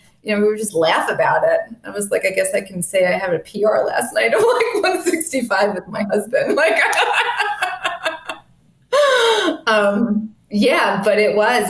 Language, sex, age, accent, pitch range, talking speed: English, female, 20-39, American, 160-205 Hz, 175 wpm